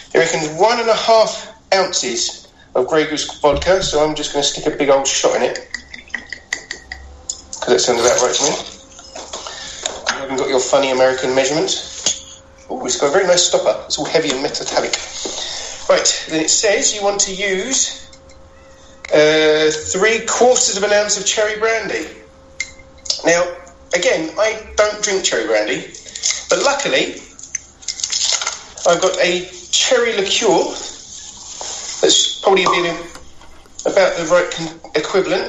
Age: 40-59